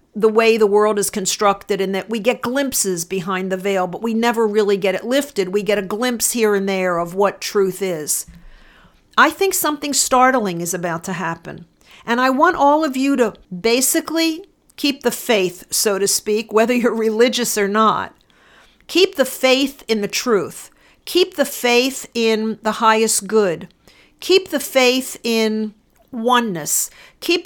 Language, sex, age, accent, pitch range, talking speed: English, female, 50-69, American, 200-265 Hz, 170 wpm